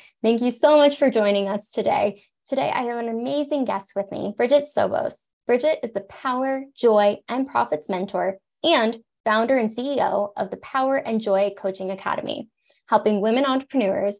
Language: English